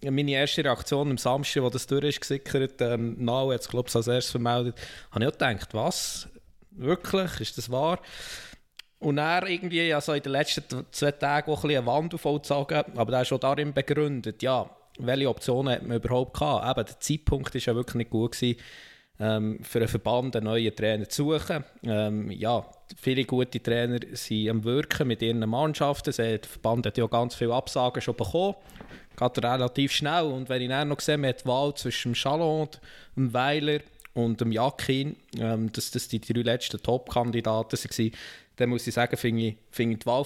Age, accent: 20-39, Austrian